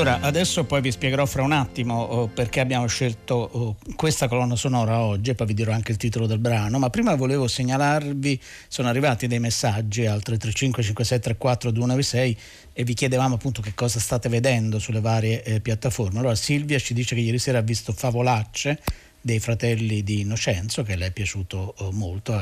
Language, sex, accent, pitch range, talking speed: Italian, male, native, 110-135 Hz, 180 wpm